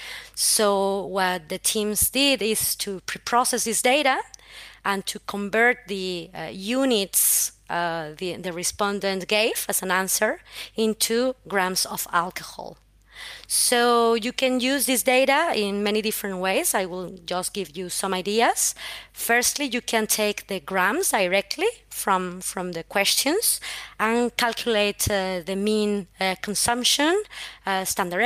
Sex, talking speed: female, 140 wpm